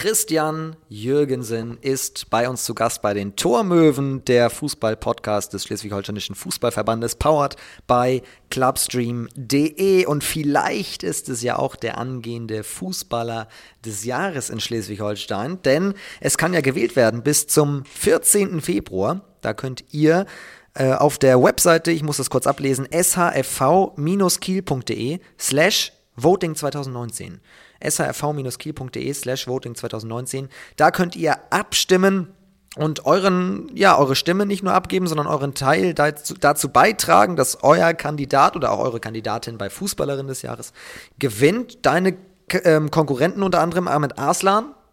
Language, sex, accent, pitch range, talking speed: German, male, German, 120-165 Hz, 130 wpm